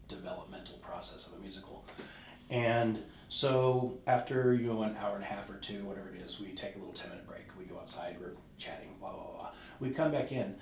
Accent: American